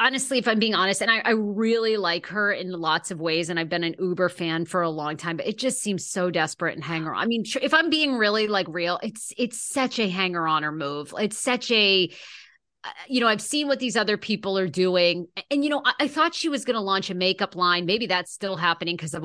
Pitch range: 175-245 Hz